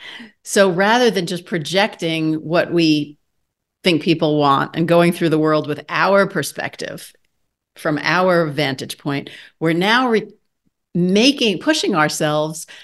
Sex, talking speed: female, 130 wpm